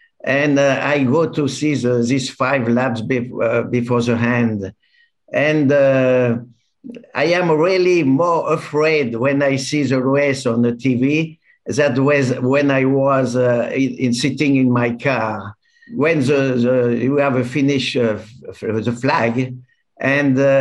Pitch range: 120-145 Hz